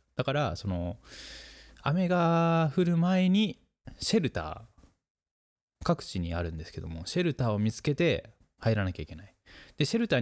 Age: 20-39